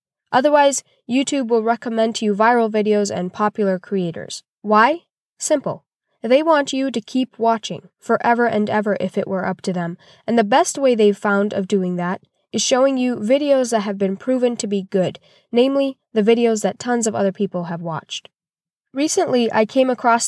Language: English